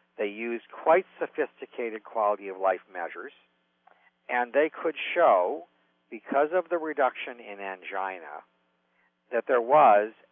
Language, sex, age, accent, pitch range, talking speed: English, male, 50-69, American, 85-115 Hz, 120 wpm